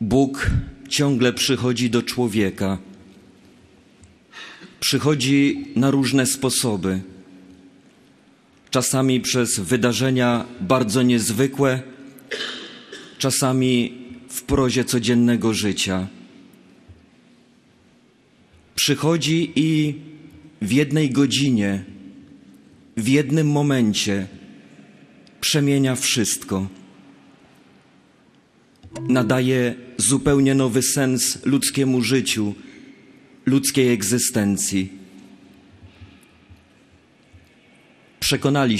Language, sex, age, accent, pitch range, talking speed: Polish, male, 40-59, native, 110-135 Hz, 60 wpm